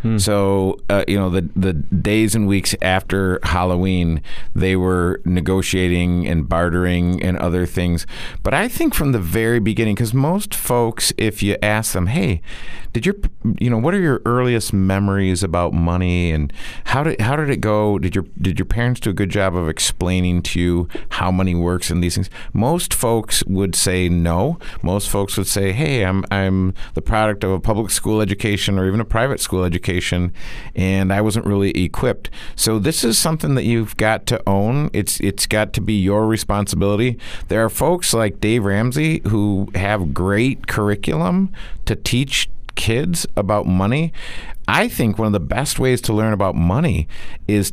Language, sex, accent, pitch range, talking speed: English, male, American, 95-115 Hz, 180 wpm